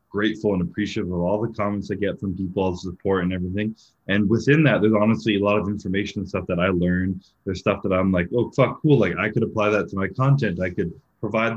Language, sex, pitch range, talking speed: English, male, 95-110 Hz, 255 wpm